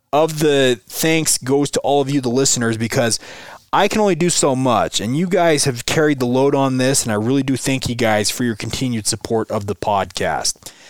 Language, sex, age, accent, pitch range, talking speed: English, male, 30-49, American, 125-160 Hz, 220 wpm